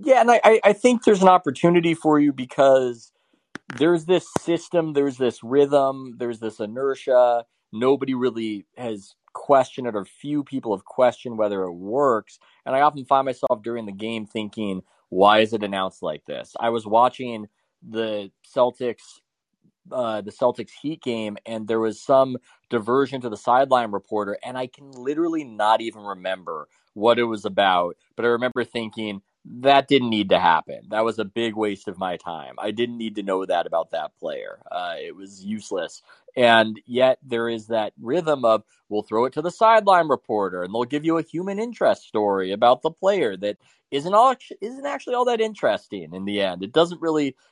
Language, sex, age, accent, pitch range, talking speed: English, male, 30-49, American, 105-145 Hz, 185 wpm